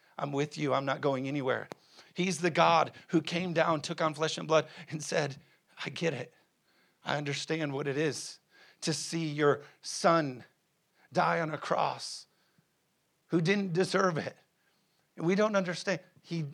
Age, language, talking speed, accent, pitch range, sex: 50-69, English, 160 wpm, American, 140-165 Hz, male